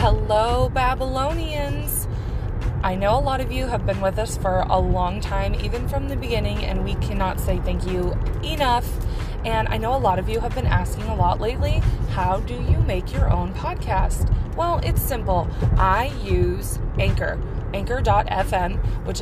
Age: 20-39